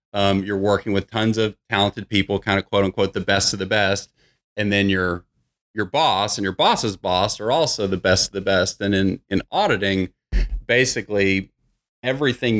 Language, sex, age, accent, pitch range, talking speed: English, male, 40-59, American, 95-110 Hz, 185 wpm